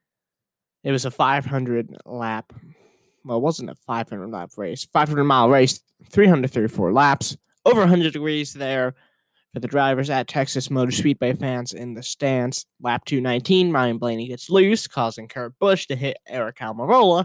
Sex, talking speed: male, 155 wpm